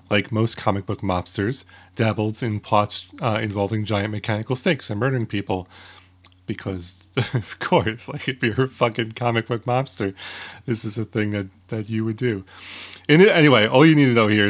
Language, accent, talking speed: English, American, 180 wpm